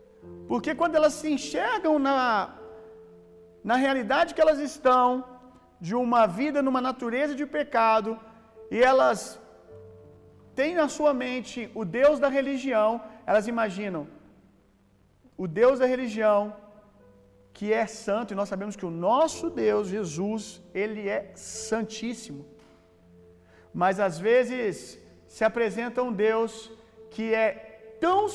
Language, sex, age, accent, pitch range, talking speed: Gujarati, male, 50-69, Brazilian, 190-250 Hz, 125 wpm